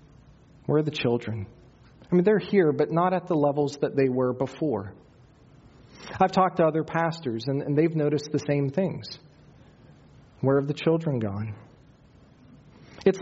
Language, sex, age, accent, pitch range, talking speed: English, male, 40-59, American, 120-145 Hz, 160 wpm